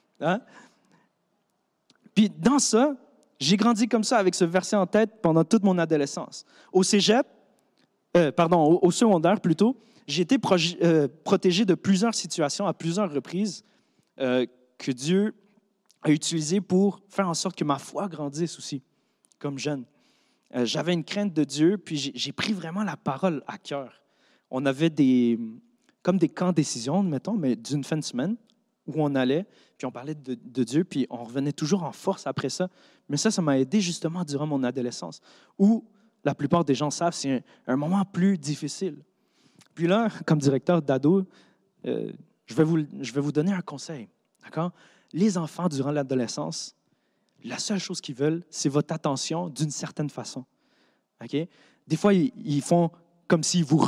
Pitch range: 145-195 Hz